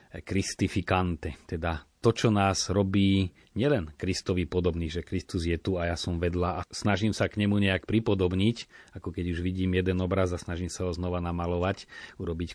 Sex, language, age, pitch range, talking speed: male, Slovak, 40-59, 90-105 Hz, 175 wpm